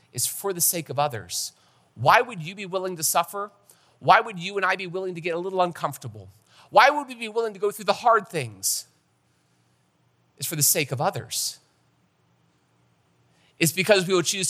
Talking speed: 195 wpm